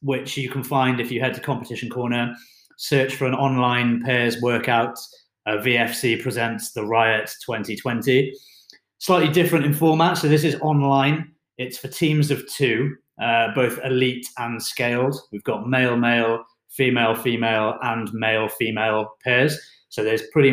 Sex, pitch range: male, 115-140 Hz